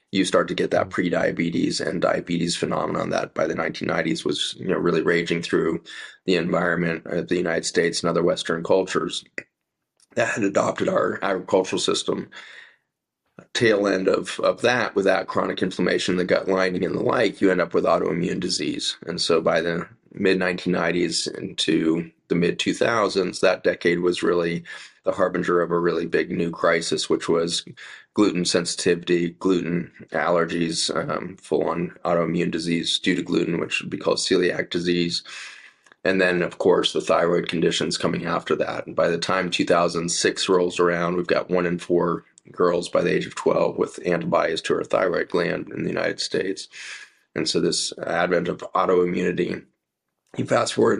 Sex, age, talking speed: male, 30-49, 165 wpm